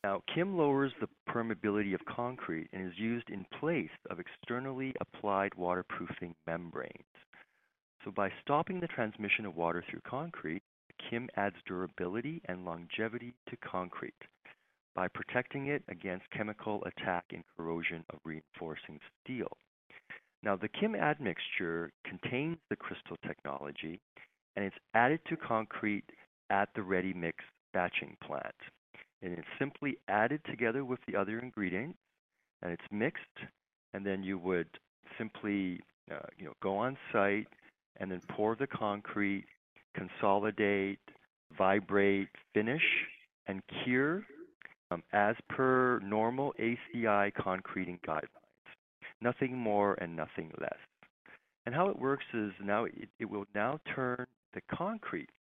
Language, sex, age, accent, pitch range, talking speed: English, male, 40-59, American, 95-125 Hz, 130 wpm